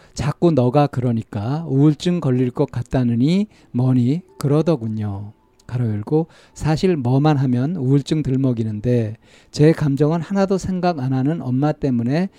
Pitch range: 120-165 Hz